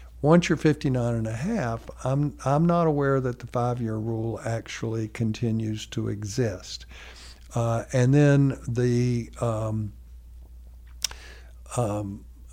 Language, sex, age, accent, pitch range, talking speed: English, male, 60-79, American, 110-130 Hz, 120 wpm